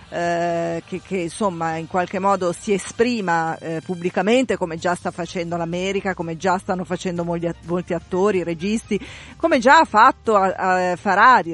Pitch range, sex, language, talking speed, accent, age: 170-205 Hz, female, Italian, 150 wpm, native, 40-59